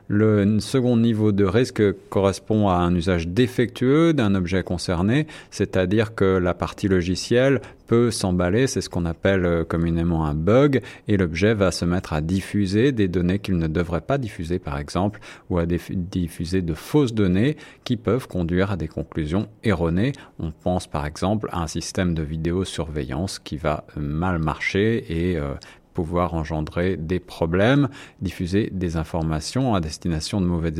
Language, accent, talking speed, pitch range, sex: French, French, 160 wpm, 90-115 Hz, male